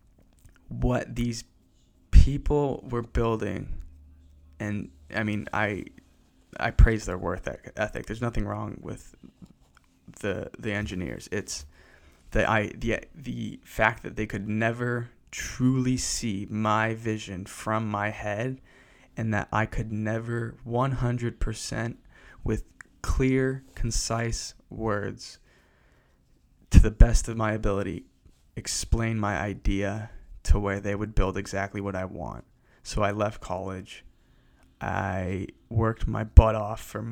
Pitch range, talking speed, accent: 90-115 Hz, 125 wpm, American